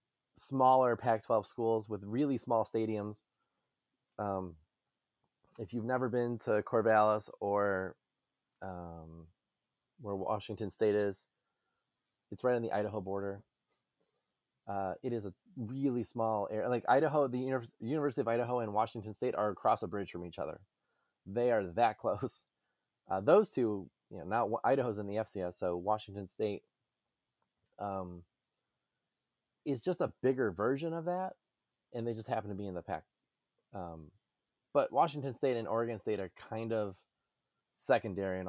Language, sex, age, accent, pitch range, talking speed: English, male, 20-39, American, 95-120 Hz, 150 wpm